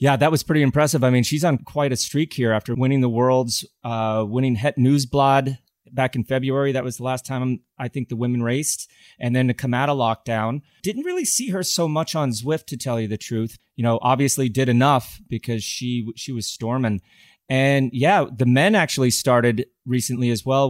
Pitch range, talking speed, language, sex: 115-140 Hz, 210 wpm, English, male